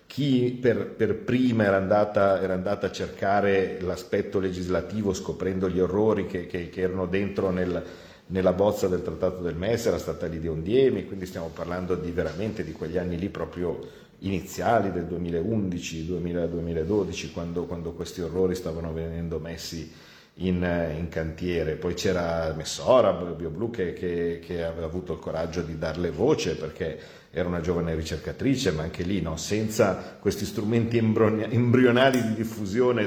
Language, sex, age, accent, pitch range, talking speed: Italian, male, 50-69, native, 85-110 Hz, 155 wpm